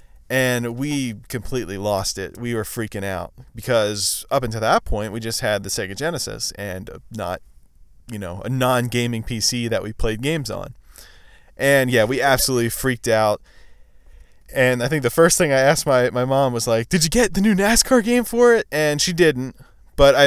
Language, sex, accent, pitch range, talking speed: English, male, American, 105-140 Hz, 190 wpm